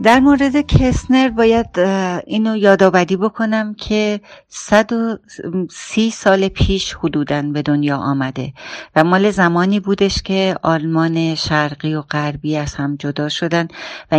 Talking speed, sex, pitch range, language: 130 wpm, female, 150-180 Hz, Persian